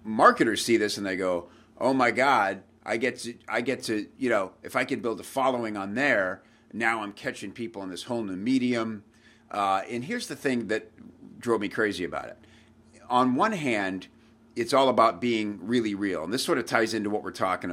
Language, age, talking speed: English, 50-69, 215 wpm